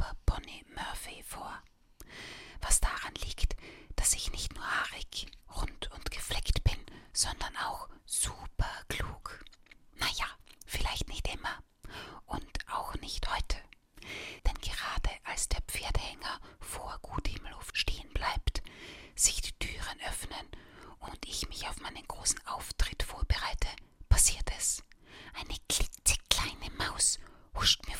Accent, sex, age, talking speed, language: German, female, 30-49, 120 wpm, German